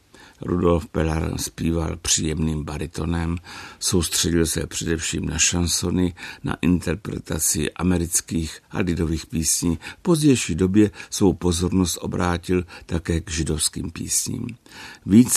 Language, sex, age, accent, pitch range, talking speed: Czech, male, 60-79, native, 80-95 Hz, 105 wpm